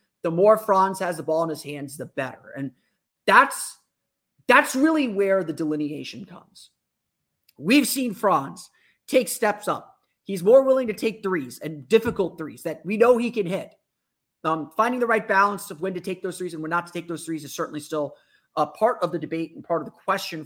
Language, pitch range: English, 160-215 Hz